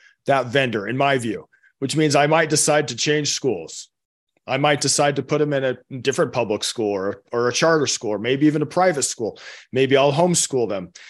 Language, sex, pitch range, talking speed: English, male, 130-155 Hz, 210 wpm